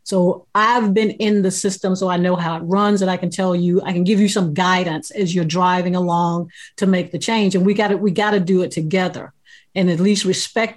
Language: English